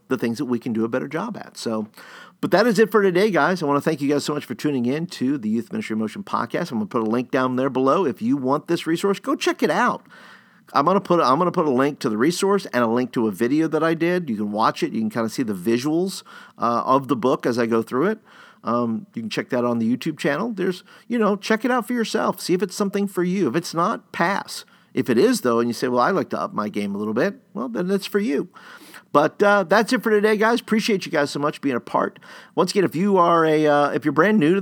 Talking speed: 300 wpm